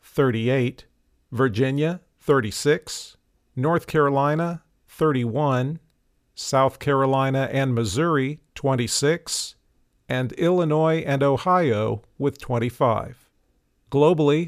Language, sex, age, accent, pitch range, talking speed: English, male, 50-69, American, 125-155 Hz, 75 wpm